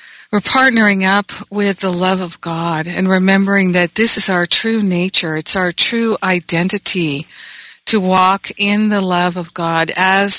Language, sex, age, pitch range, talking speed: English, female, 50-69, 175-205 Hz, 160 wpm